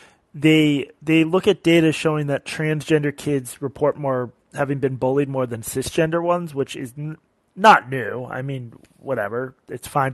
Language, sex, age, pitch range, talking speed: English, male, 30-49, 125-160 Hz, 165 wpm